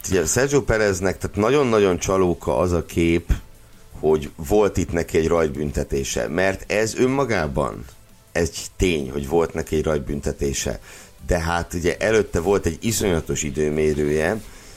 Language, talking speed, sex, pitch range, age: Hungarian, 130 wpm, male, 75-95 Hz, 60-79